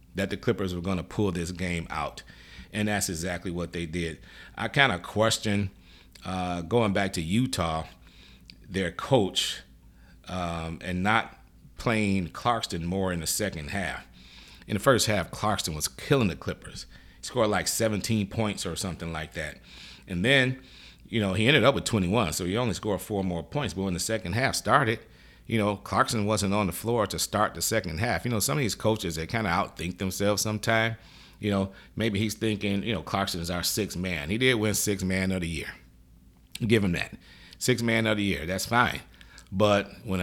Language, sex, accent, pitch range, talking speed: English, male, American, 90-105 Hz, 195 wpm